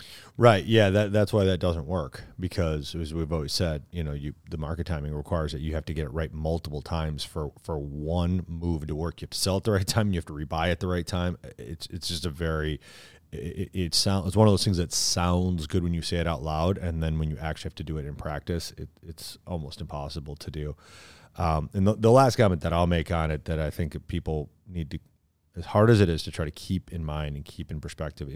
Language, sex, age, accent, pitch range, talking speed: English, male, 30-49, American, 75-95 Hz, 260 wpm